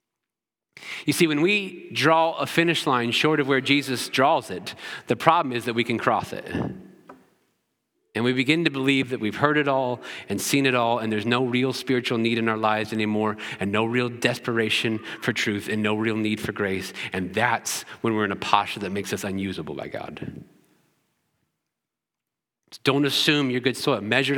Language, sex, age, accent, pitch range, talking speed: English, male, 30-49, American, 120-155 Hz, 190 wpm